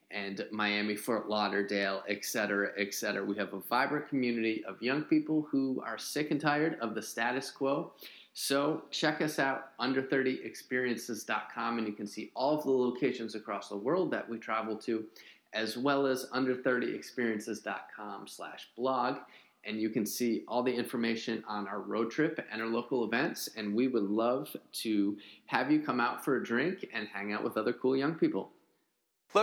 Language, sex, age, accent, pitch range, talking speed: English, male, 30-49, American, 110-150 Hz, 175 wpm